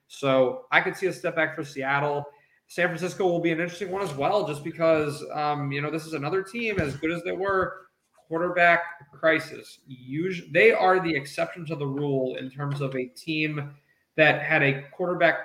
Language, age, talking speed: English, 20-39, 200 wpm